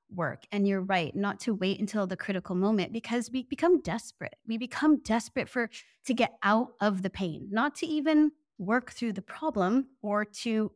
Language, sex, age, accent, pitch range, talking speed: English, female, 20-39, American, 190-230 Hz, 190 wpm